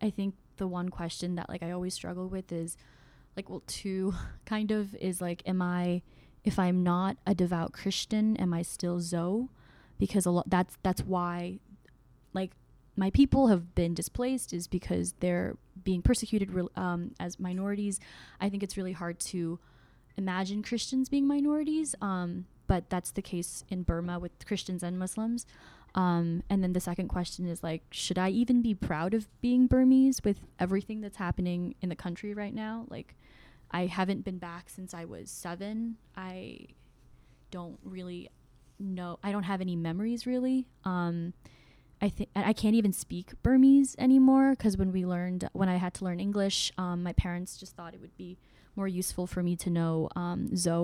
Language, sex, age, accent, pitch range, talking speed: English, female, 10-29, American, 175-205 Hz, 180 wpm